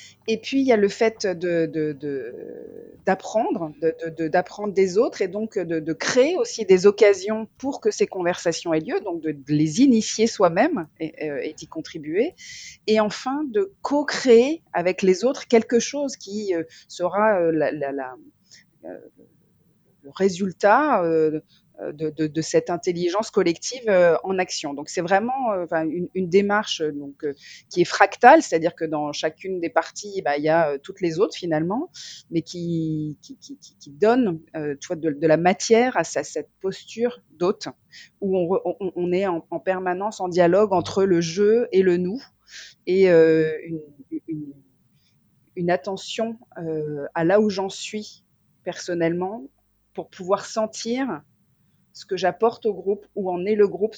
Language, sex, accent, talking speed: French, female, French, 175 wpm